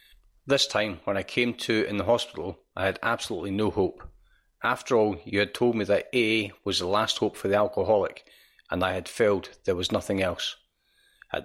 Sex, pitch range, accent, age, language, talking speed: male, 100-120 Hz, British, 40-59, English, 200 wpm